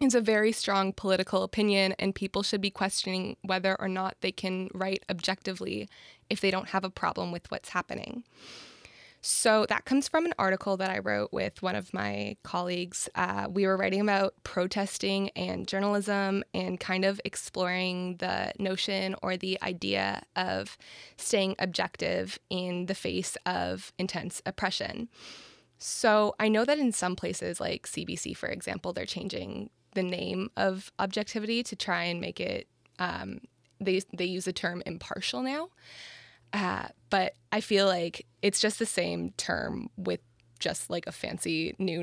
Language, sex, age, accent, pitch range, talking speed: English, female, 20-39, American, 180-215 Hz, 160 wpm